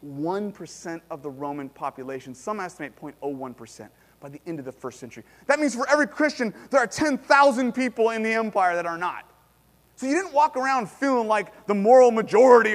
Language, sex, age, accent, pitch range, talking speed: English, male, 30-49, American, 145-240 Hz, 185 wpm